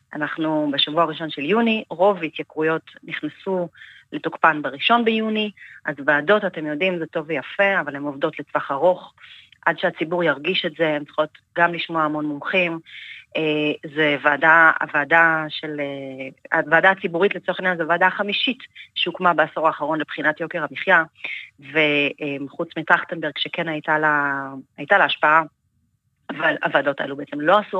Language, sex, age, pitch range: Hebrew, female, 30-49, 155-195 Hz